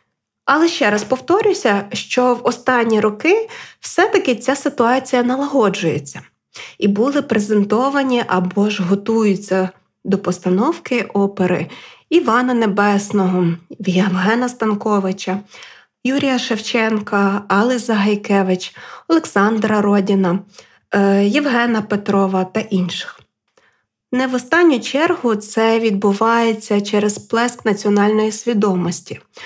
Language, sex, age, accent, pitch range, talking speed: Ukrainian, female, 20-39, native, 200-245 Hz, 90 wpm